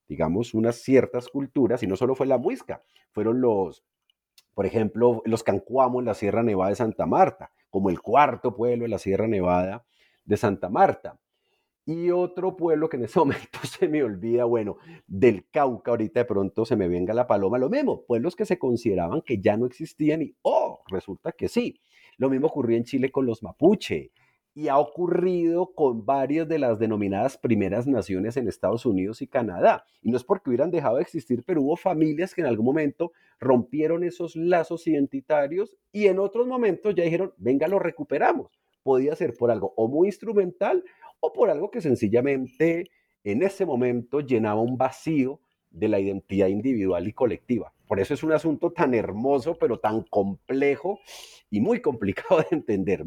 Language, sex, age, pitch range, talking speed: Spanish, male, 40-59, 115-170 Hz, 180 wpm